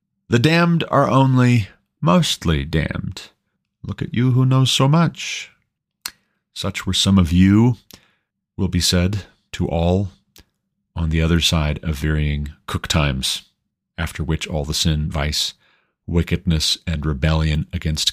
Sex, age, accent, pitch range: male, 40-59, American, 80-110 Hz